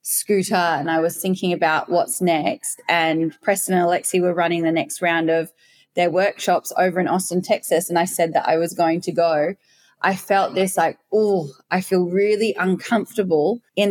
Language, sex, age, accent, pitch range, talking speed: English, female, 20-39, Australian, 170-215 Hz, 185 wpm